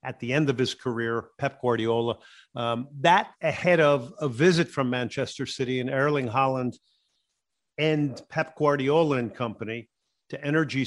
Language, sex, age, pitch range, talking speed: English, male, 50-69, 125-155 Hz, 150 wpm